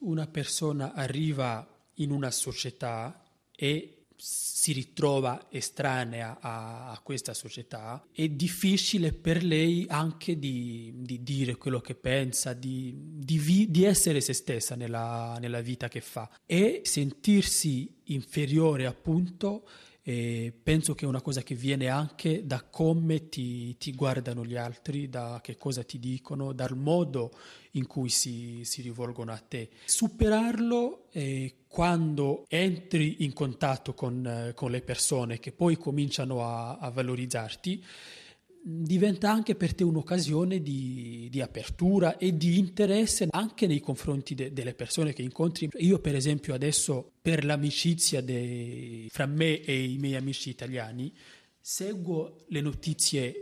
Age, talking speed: 30-49, 135 wpm